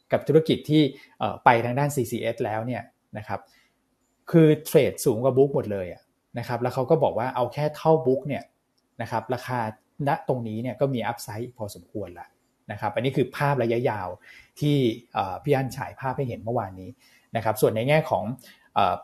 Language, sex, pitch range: Thai, male, 115-140 Hz